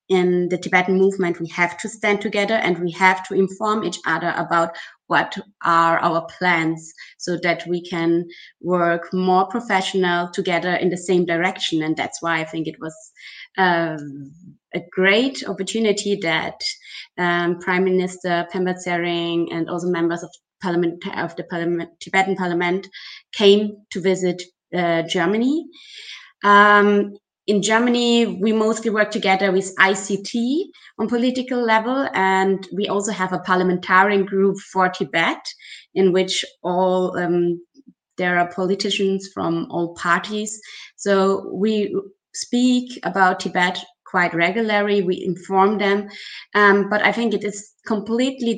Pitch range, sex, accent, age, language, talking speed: 175-205 Hz, female, German, 20-39, English, 140 wpm